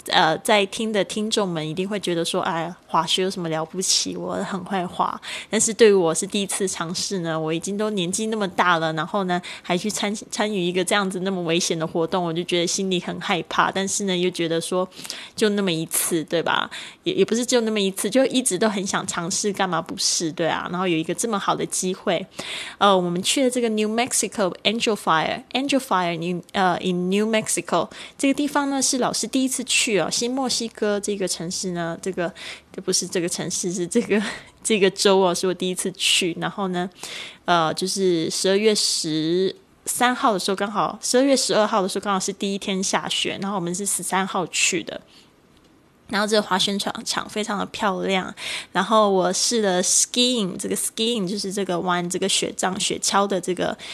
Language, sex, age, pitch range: Chinese, female, 20-39, 180-210 Hz